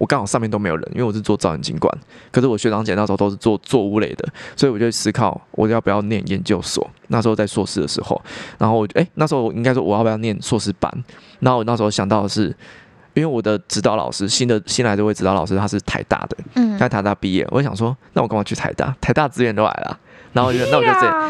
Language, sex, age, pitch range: Chinese, male, 20-39, 100-125 Hz